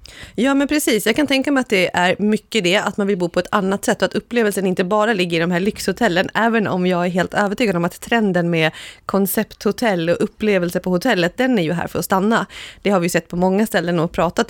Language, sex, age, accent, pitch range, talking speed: Swedish, female, 30-49, native, 180-220 Hz, 255 wpm